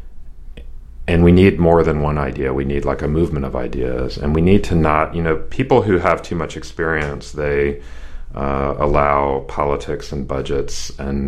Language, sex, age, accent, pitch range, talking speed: English, male, 40-59, American, 65-75 Hz, 180 wpm